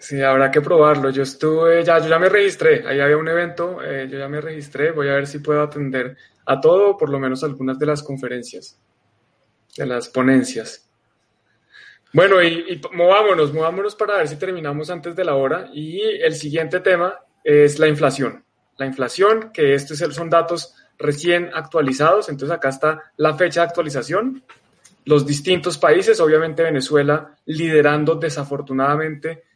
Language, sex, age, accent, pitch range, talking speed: Spanish, male, 20-39, Colombian, 140-170 Hz, 165 wpm